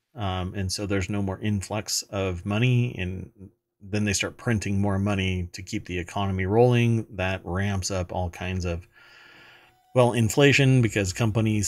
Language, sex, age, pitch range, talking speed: English, male, 40-59, 90-115 Hz, 160 wpm